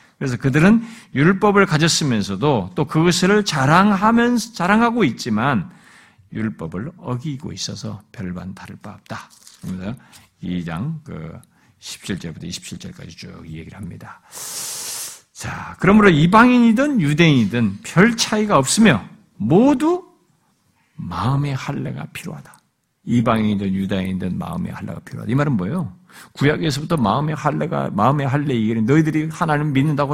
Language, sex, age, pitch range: Korean, male, 50-69, 115-175 Hz